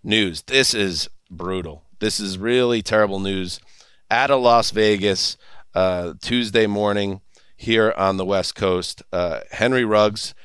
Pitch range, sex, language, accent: 95-110 Hz, male, English, American